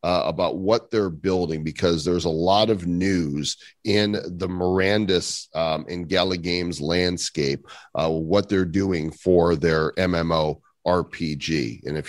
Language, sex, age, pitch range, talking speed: English, male, 40-59, 75-100 Hz, 140 wpm